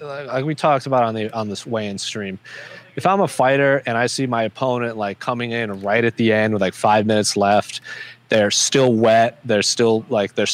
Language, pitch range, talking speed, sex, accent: English, 105-125 Hz, 220 wpm, male, American